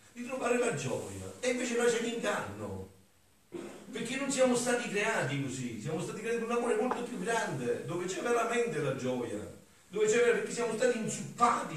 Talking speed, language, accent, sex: 180 wpm, Italian, native, male